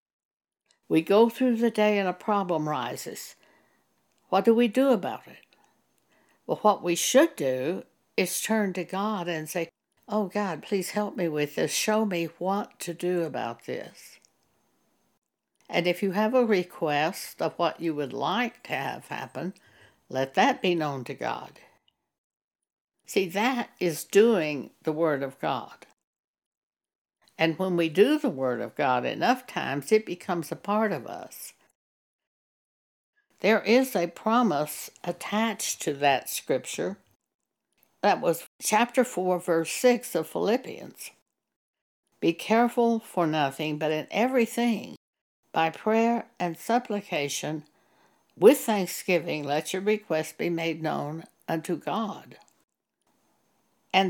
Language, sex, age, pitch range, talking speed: English, female, 60-79, 160-220 Hz, 135 wpm